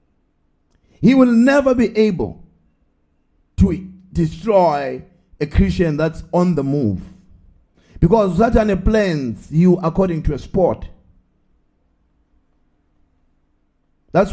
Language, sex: English, male